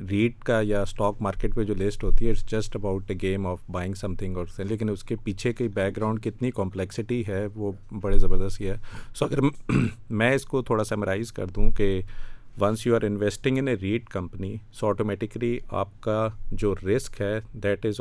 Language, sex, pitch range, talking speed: Urdu, male, 100-115 Hz, 195 wpm